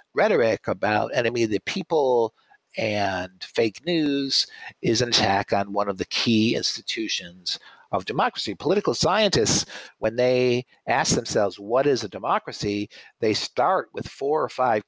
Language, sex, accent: English, male, American